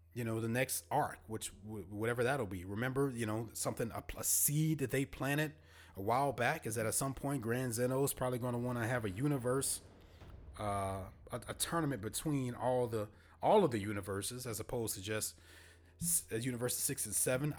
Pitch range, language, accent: 105-135 Hz, English, American